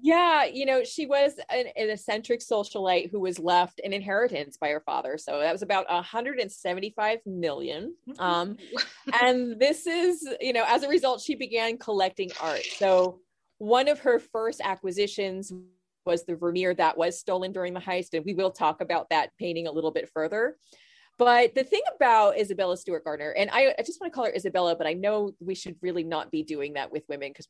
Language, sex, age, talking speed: English, female, 30-49, 200 wpm